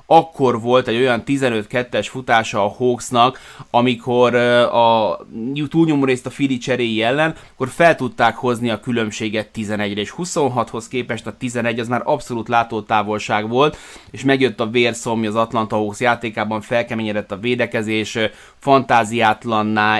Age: 20-39